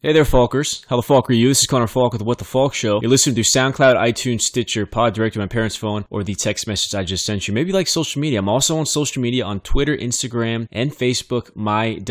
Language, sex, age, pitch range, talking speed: English, male, 20-39, 105-130 Hz, 270 wpm